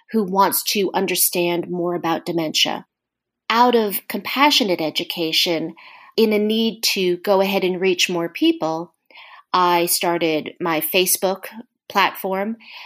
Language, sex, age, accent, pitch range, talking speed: English, female, 40-59, American, 175-230 Hz, 120 wpm